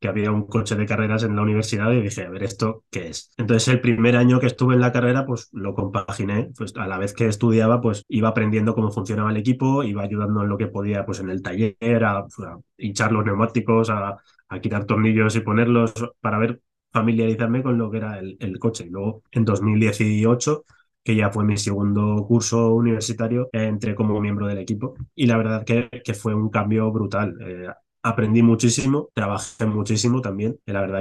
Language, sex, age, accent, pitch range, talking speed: Spanish, male, 20-39, Spanish, 100-115 Hz, 205 wpm